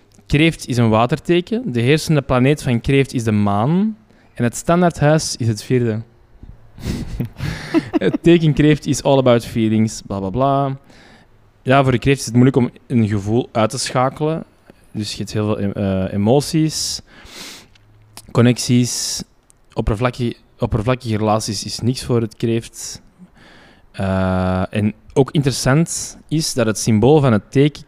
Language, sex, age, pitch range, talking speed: Dutch, male, 20-39, 110-140 Hz, 140 wpm